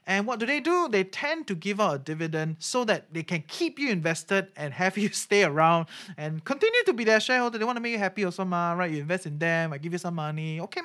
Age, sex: 20-39, male